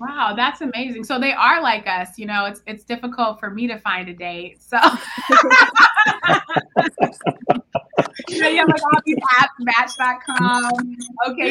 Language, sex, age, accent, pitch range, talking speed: English, female, 20-39, American, 195-245 Hz, 150 wpm